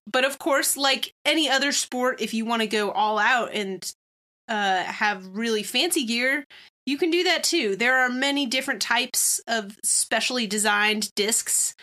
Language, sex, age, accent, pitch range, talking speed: English, female, 30-49, American, 210-255 Hz, 170 wpm